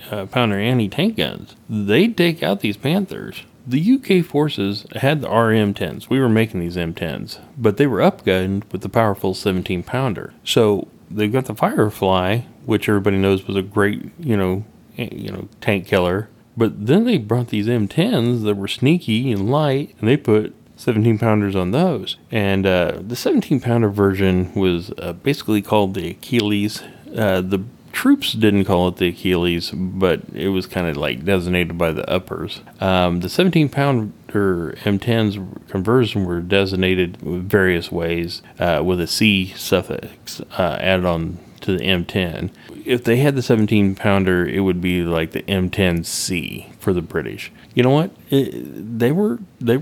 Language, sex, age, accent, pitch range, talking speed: English, male, 30-49, American, 95-125 Hz, 160 wpm